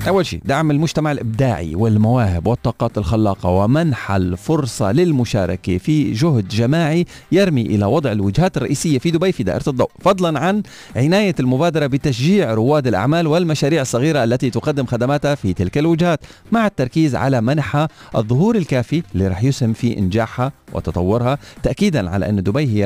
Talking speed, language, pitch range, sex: 145 wpm, Arabic, 100-160 Hz, male